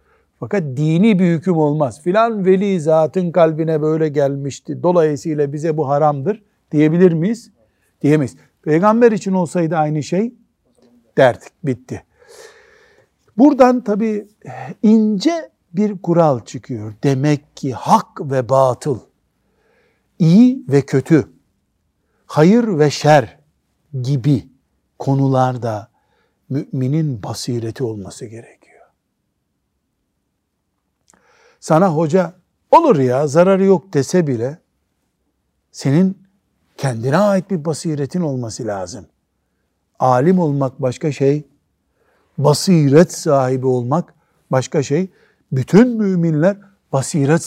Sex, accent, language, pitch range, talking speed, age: male, native, Turkish, 135-185 Hz, 95 wpm, 60-79